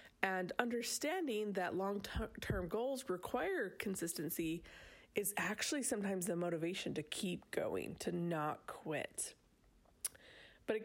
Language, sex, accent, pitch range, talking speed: English, female, American, 170-220 Hz, 110 wpm